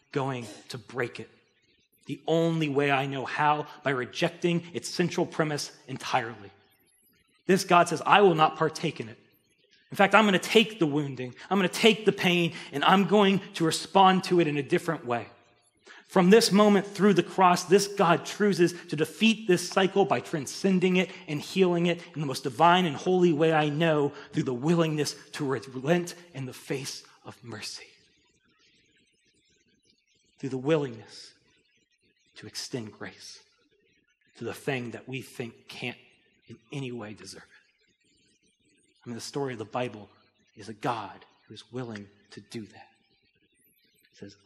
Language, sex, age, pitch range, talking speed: English, male, 30-49, 125-175 Hz, 165 wpm